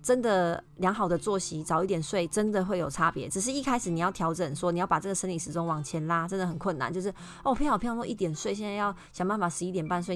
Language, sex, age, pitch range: Chinese, female, 20-39, 170-205 Hz